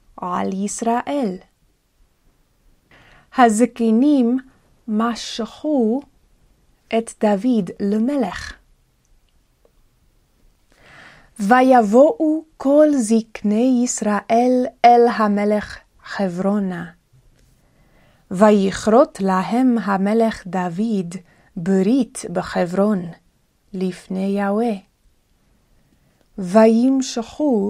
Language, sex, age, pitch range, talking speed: Hebrew, female, 30-49, 190-245 Hz, 50 wpm